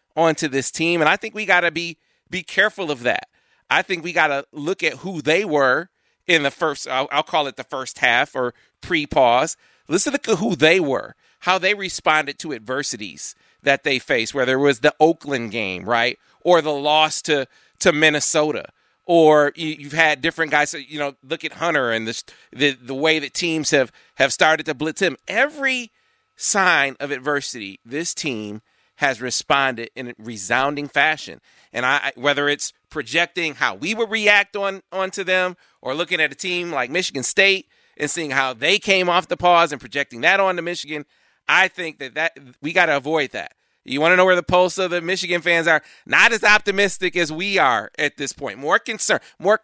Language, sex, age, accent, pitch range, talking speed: English, male, 40-59, American, 145-185 Hz, 200 wpm